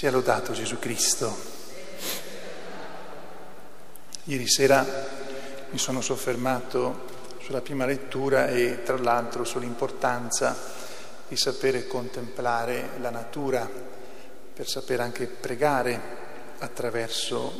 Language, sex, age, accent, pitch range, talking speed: Italian, male, 40-59, native, 120-135 Hz, 90 wpm